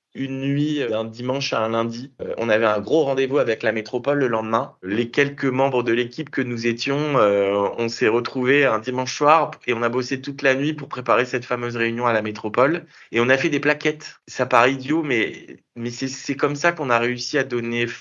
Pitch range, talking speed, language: 115-140 Hz, 220 wpm, French